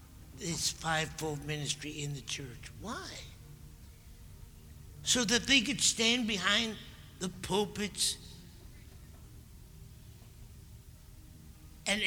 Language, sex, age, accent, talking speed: English, male, 60-79, American, 80 wpm